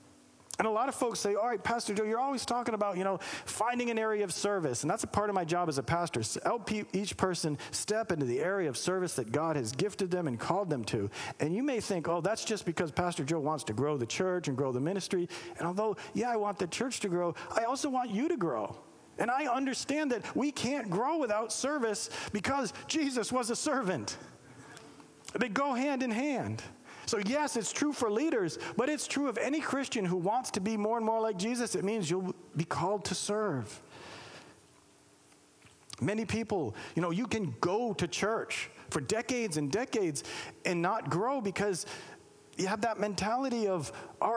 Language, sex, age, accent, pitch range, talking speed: English, male, 50-69, American, 180-245 Hz, 210 wpm